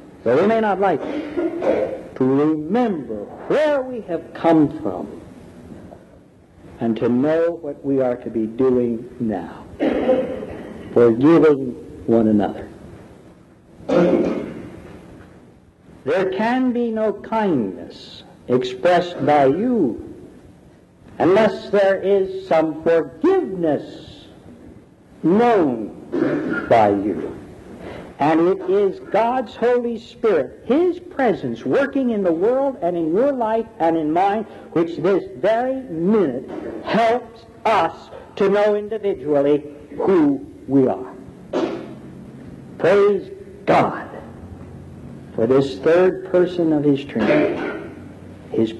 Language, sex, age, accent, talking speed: English, male, 60-79, American, 100 wpm